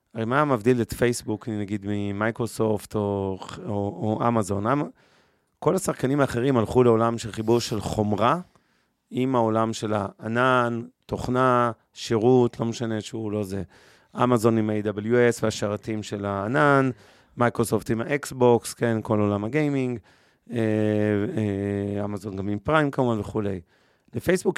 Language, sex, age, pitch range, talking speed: Hebrew, male, 30-49, 105-125 Hz, 115 wpm